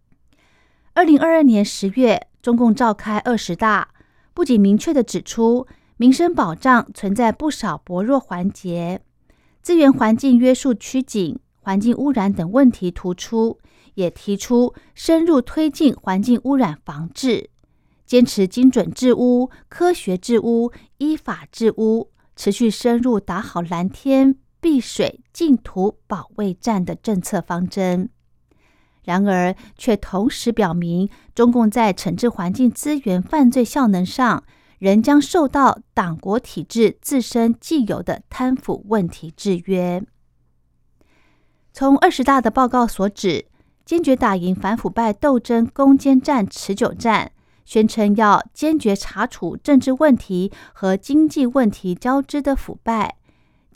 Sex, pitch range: female, 195-260 Hz